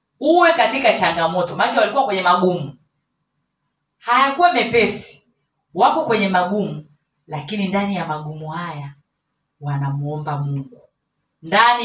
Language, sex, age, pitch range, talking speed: Swahili, female, 30-49, 155-215 Hz, 100 wpm